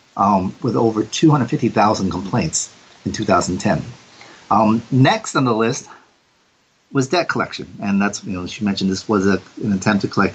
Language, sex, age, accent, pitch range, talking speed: English, male, 40-59, American, 110-140 Hz, 155 wpm